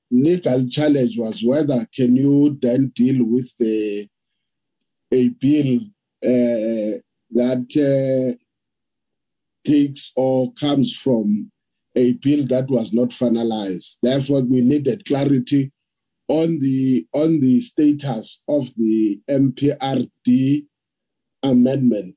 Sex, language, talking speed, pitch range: male, English, 105 wpm, 120-145 Hz